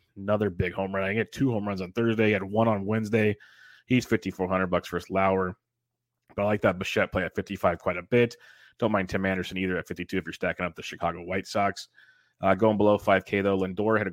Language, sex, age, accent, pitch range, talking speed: English, male, 30-49, American, 95-105 Hz, 265 wpm